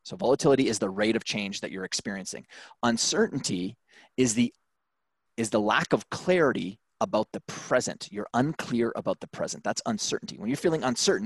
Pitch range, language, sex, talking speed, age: 115-155 Hz, English, male, 170 wpm, 30-49